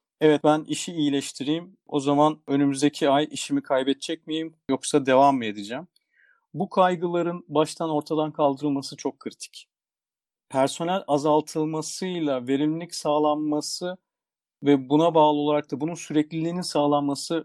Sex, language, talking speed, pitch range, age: male, Turkish, 115 wpm, 140-165 Hz, 50-69